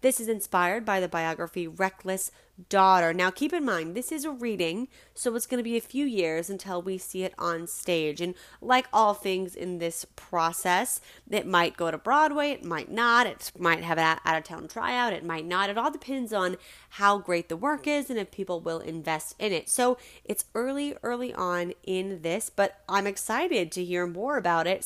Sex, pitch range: female, 170-235 Hz